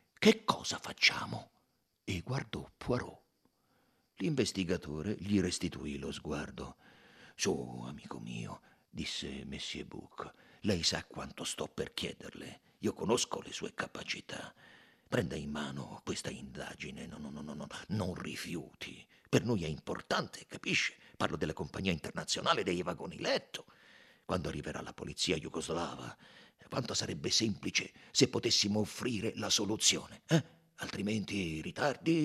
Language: Italian